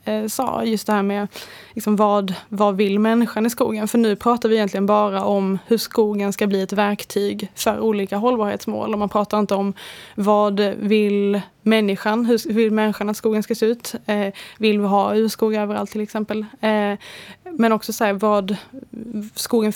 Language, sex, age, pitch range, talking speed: Swedish, female, 20-39, 200-215 Hz, 180 wpm